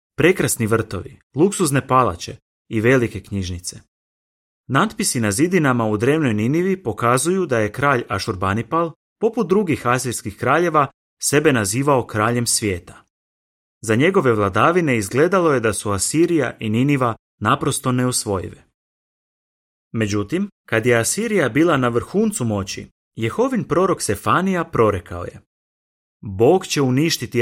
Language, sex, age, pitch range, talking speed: Croatian, male, 30-49, 105-150 Hz, 120 wpm